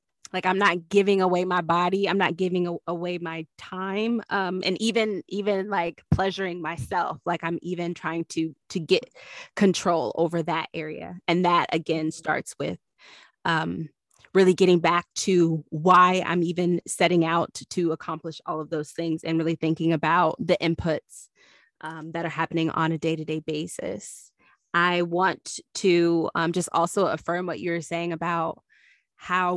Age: 20-39